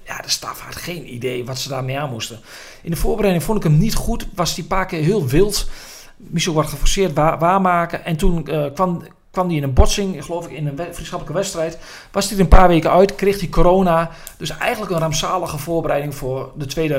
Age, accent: 40-59, Dutch